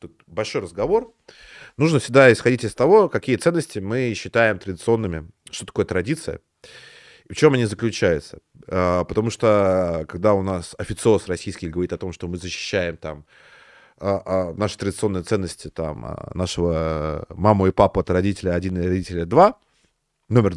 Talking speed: 145 wpm